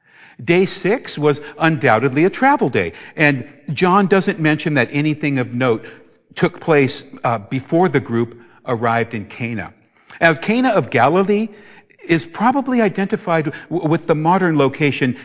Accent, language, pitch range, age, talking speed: American, English, 125-170 Hz, 60-79, 140 wpm